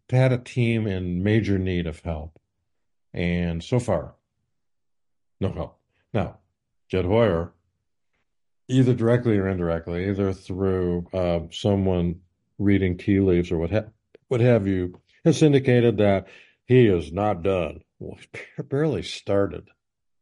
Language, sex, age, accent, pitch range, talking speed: English, male, 60-79, American, 90-110 Hz, 135 wpm